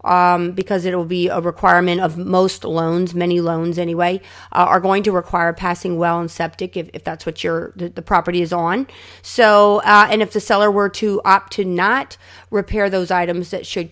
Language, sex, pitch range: English, female, 180-210 Hz